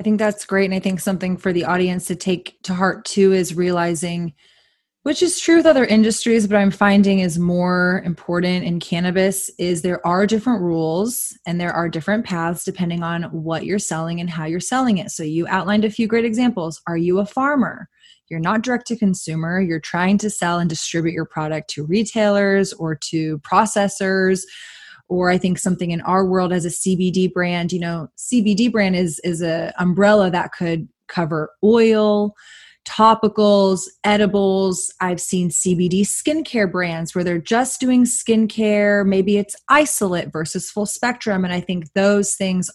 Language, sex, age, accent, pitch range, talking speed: English, female, 20-39, American, 175-210 Hz, 180 wpm